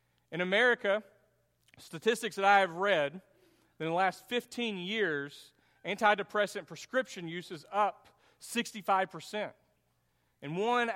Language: English